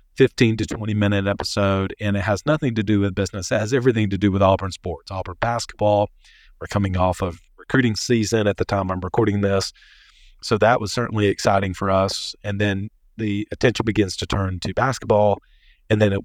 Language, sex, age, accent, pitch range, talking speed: English, male, 40-59, American, 100-120 Hz, 200 wpm